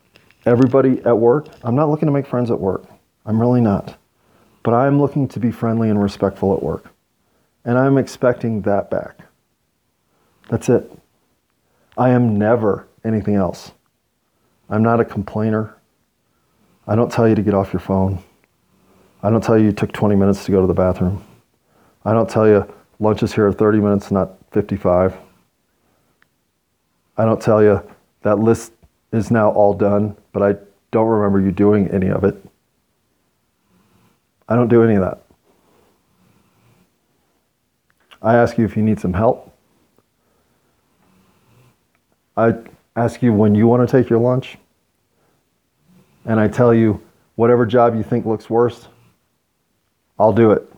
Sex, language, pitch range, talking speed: male, English, 100-120 Hz, 150 wpm